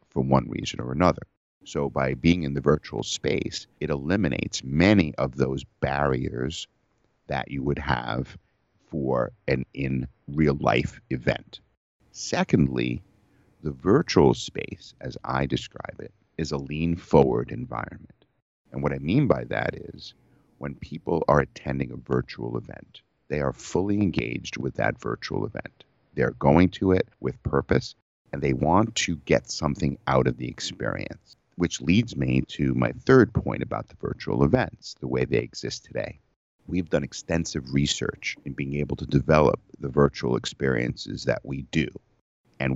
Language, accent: English, American